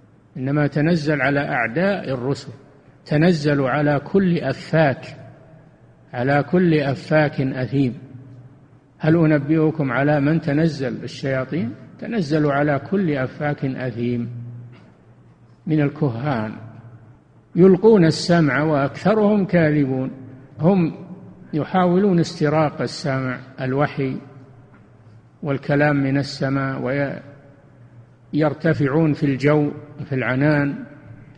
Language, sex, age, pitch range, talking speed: Arabic, male, 50-69, 130-165 Hz, 85 wpm